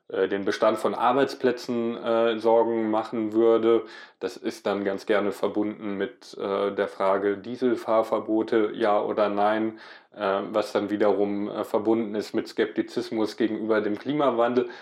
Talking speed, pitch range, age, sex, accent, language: 140 wpm, 105-120 Hz, 20-39, male, German, German